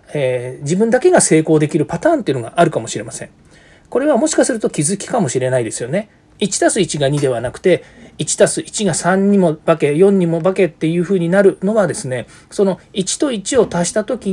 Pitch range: 130-200 Hz